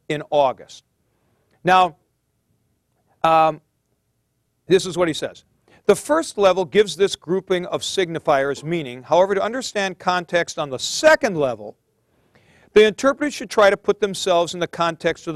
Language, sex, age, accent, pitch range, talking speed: English, male, 40-59, American, 155-200 Hz, 145 wpm